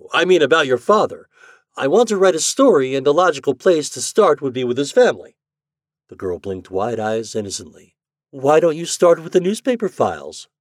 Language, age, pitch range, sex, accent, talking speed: English, 60-79, 135-185 Hz, male, American, 205 wpm